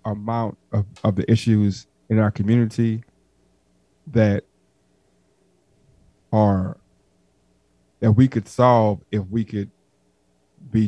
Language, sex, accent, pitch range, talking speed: English, male, American, 105-125 Hz, 100 wpm